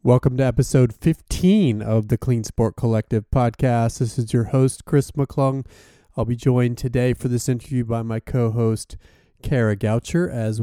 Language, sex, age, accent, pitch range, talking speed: English, male, 30-49, American, 110-125 Hz, 165 wpm